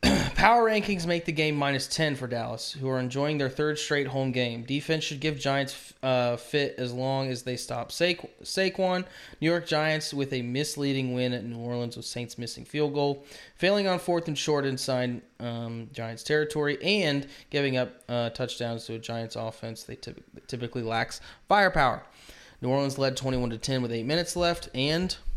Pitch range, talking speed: 115-140 Hz, 185 wpm